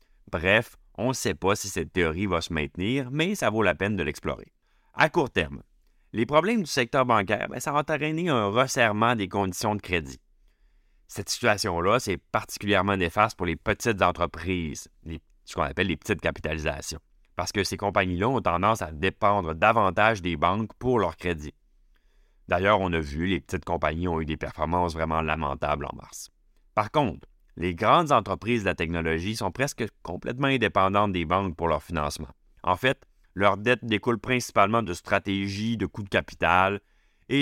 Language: French